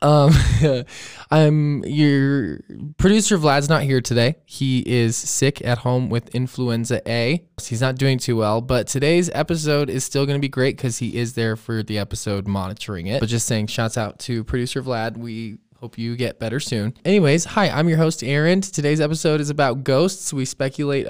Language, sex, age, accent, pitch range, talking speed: English, male, 20-39, American, 115-145 Hz, 185 wpm